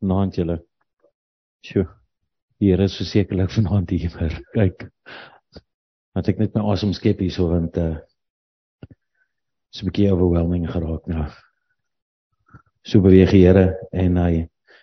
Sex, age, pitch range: male, 50-69, 85-100 Hz